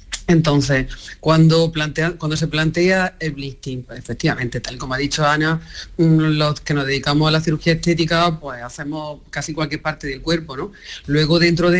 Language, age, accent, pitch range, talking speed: Spanish, 40-59, Spanish, 150-190 Hz, 170 wpm